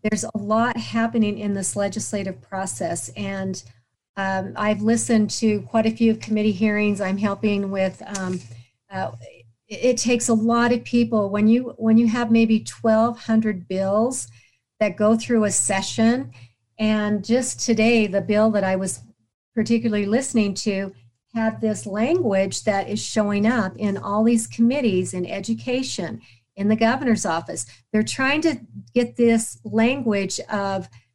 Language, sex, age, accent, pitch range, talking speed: English, female, 50-69, American, 195-225 Hz, 145 wpm